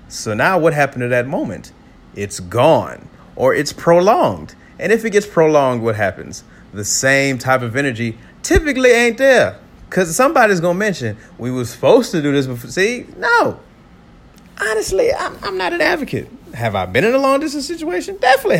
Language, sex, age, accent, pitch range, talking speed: English, male, 30-49, American, 100-160 Hz, 185 wpm